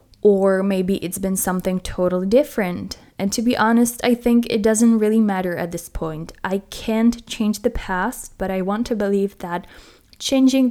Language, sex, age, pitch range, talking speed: English, female, 20-39, 185-220 Hz, 180 wpm